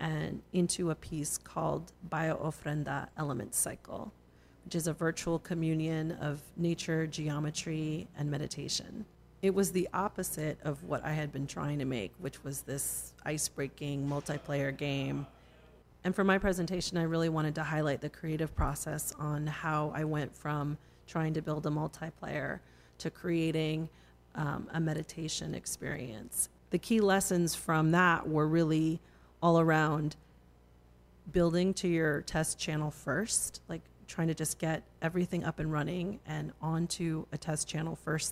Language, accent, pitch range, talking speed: English, American, 150-165 Hz, 150 wpm